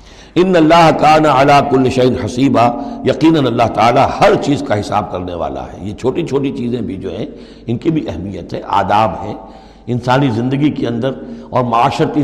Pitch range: 115-155 Hz